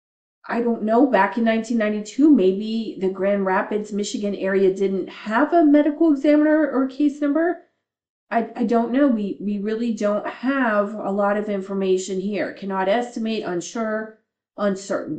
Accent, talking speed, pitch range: American, 150 wpm, 200-250 Hz